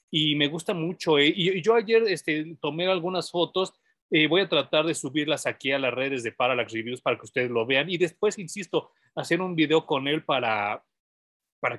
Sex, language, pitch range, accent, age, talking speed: male, Spanish, 135-185 Hz, Mexican, 40-59, 210 wpm